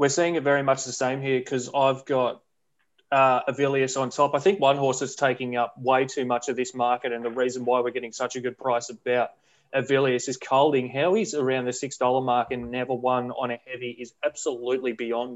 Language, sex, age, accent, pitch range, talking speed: English, male, 20-39, Australian, 125-135 Hz, 225 wpm